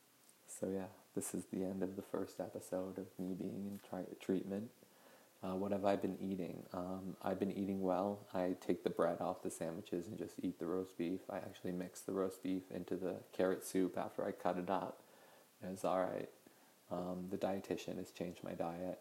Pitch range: 90-105 Hz